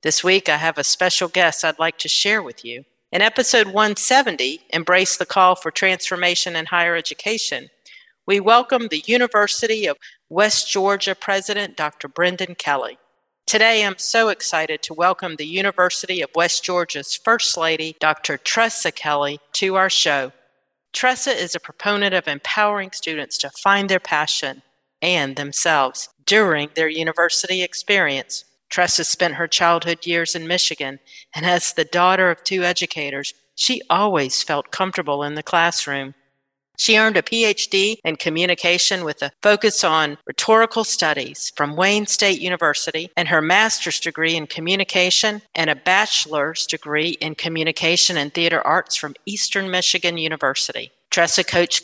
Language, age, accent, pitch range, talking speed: English, 50-69, American, 160-200 Hz, 150 wpm